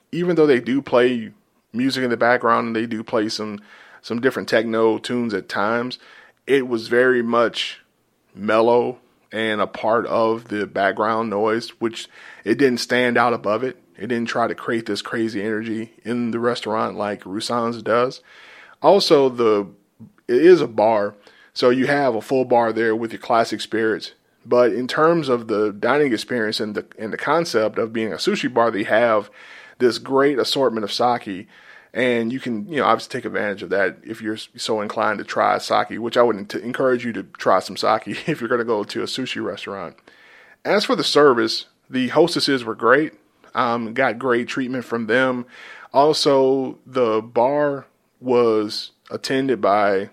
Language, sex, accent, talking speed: English, male, American, 180 wpm